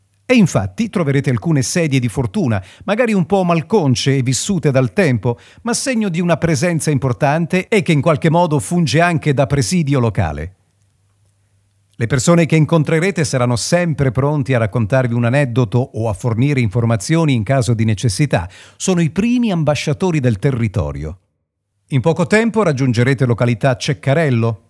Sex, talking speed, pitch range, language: male, 150 wpm, 120-175 Hz, Italian